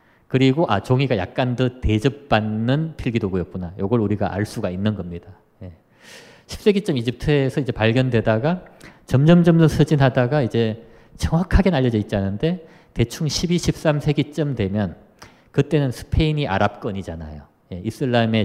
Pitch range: 105-140 Hz